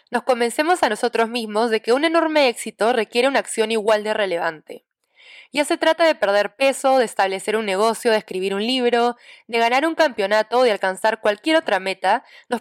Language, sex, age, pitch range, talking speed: Spanish, female, 10-29, 205-270 Hz, 195 wpm